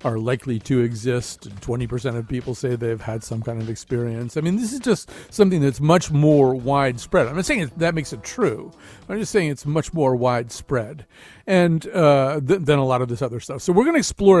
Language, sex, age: English, male, 40-59